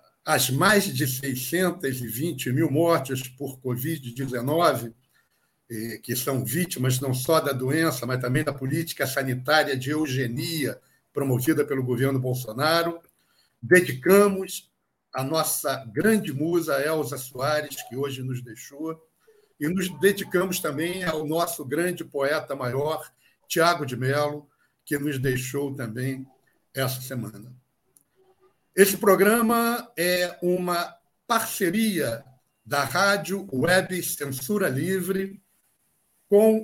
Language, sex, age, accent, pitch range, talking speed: Portuguese, male, 60-79, Brazilian, 130-180 Hz, 110 wpm